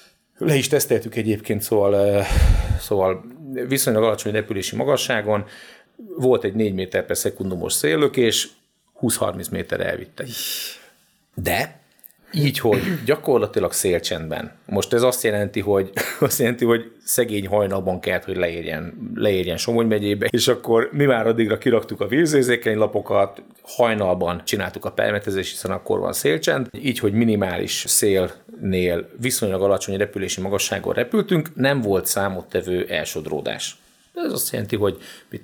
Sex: male